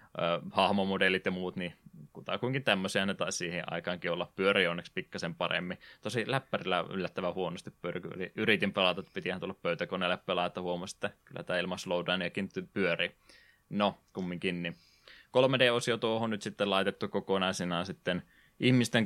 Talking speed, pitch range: 135 wpm, 90-100 Hz